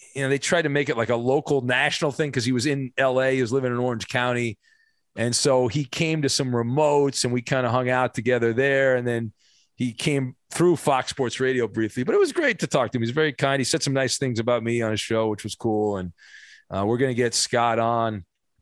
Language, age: English, 40-59